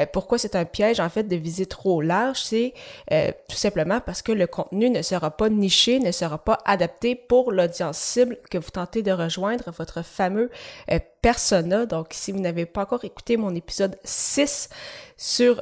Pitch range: 175-215 Hz